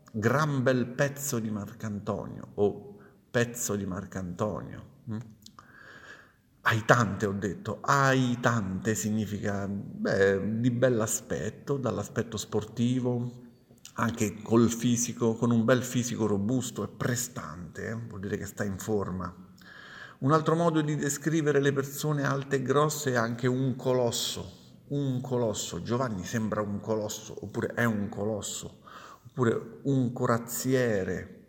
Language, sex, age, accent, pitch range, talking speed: Italian, male, 50-69, native, 100-125 Hz, 130 wpm